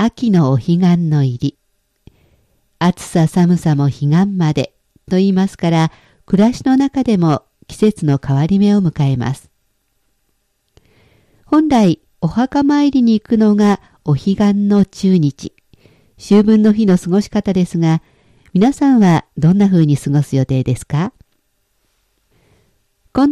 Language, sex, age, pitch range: Japanese, female, 50-69, 150-220 Hz